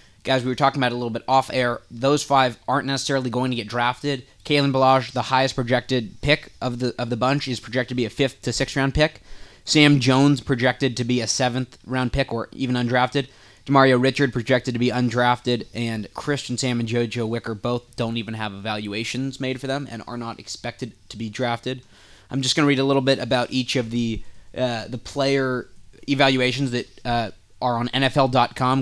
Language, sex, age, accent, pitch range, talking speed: English, male, 20-39, American, 120-135 Hz, 205 wpm